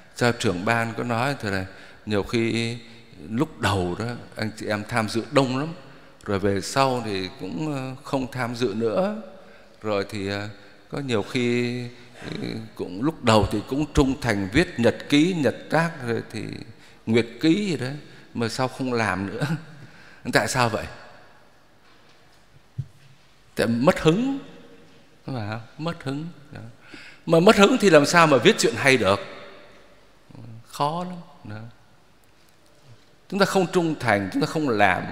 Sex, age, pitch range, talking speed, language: male, 60-79, 115-170 Hz, 145 wpm, Vietnamese